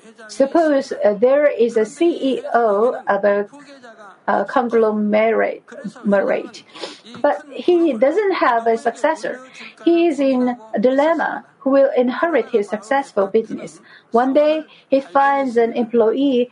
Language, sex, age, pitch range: Korean, female, 50-69, 225-285 Hz